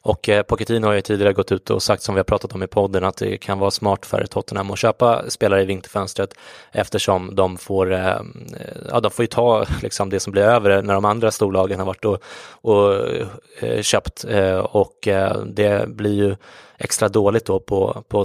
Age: 20-39